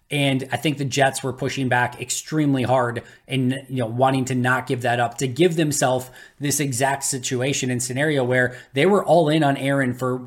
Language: English